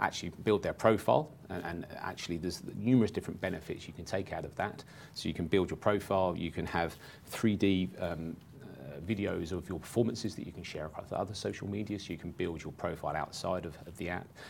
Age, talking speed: 30-49, 215 wpm